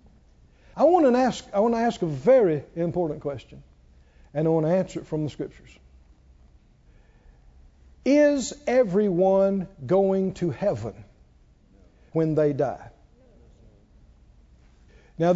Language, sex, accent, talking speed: English, male, American, 115 wpm